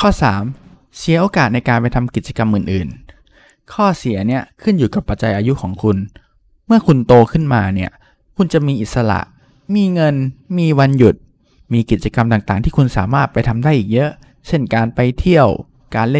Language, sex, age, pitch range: Thai, male, 20-39, 110-150 Hz